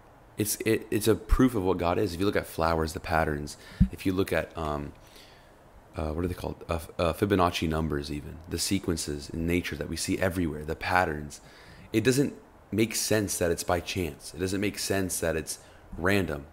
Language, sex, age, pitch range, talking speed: English, male, 30-49, 80-95 Hz, 205 wpm